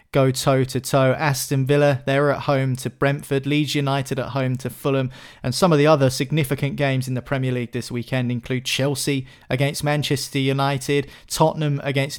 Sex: male